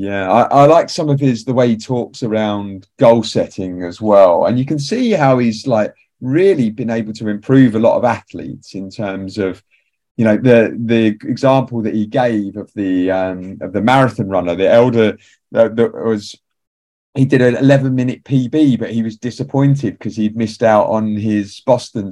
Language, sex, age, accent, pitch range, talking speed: English, male, 30-49, British, 105-135 Hz, 195 wpm